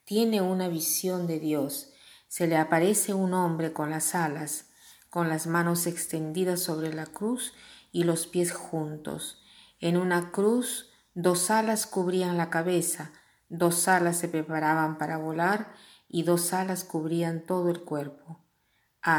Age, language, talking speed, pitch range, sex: 40-59, Spanish, 145 wpm, 160-185 Hz, female